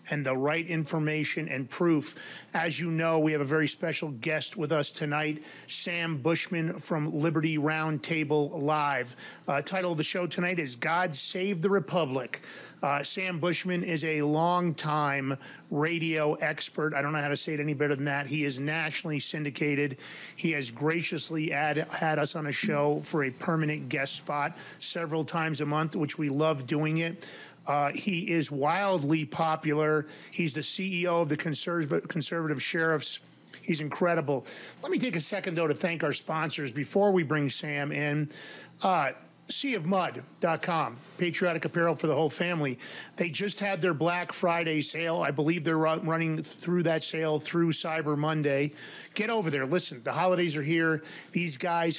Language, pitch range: English, 150-170 Hz